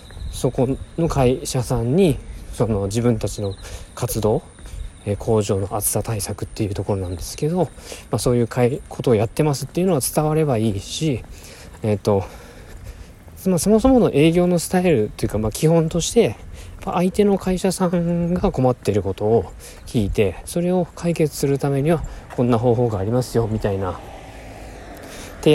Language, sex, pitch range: Japanese, male, 100-155 Hz